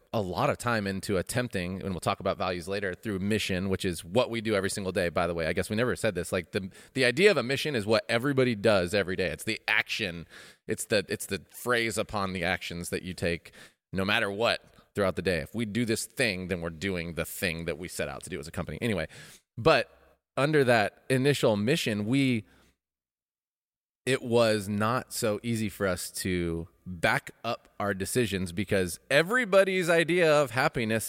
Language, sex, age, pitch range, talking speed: English, male, 30-49, 95-120 Hz, 205 wpm